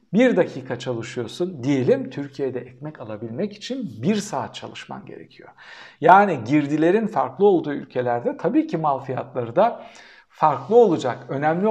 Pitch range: 135-215 Hz